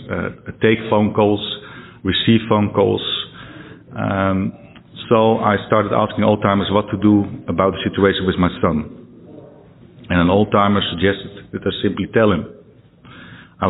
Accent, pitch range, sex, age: Dutch, 95-110 Hz, male, 50-69